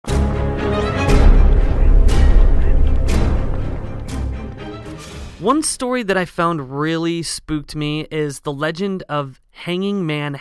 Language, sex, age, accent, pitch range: English, male, 30-49, American, 140-195 Hz